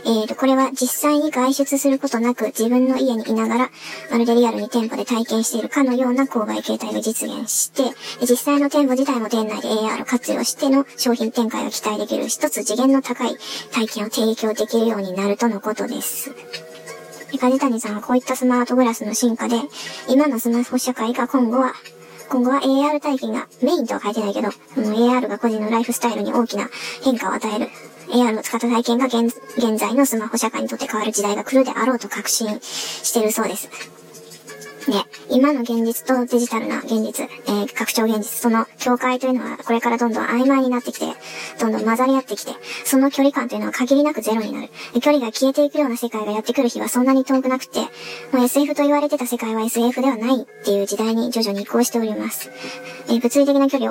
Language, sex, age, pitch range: Japanese, male, 20-39, 225-265 Hz